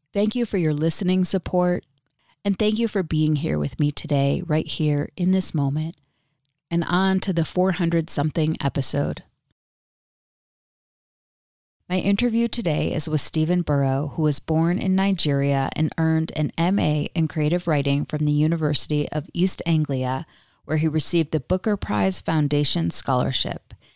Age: 30-49